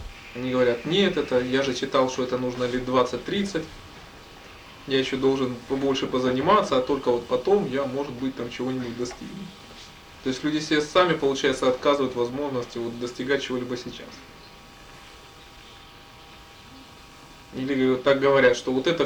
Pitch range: 125-150 Hz